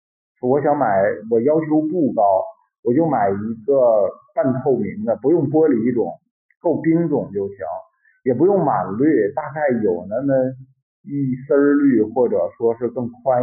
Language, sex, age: Chinese, male, 50-69